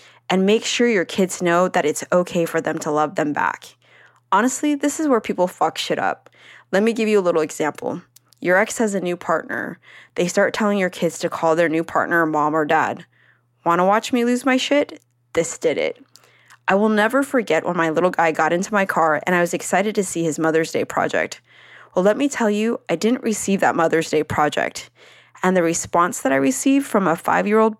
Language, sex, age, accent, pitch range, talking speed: English, female, 20-39, American, 170-230 Hz, 220 wpm